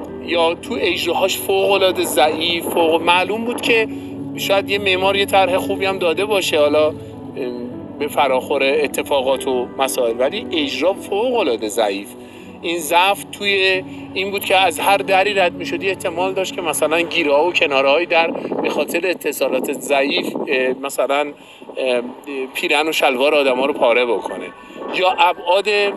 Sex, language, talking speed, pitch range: male, Persian, 145 wpm, 145-195 Hz